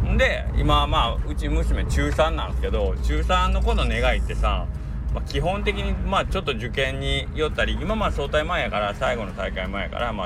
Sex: male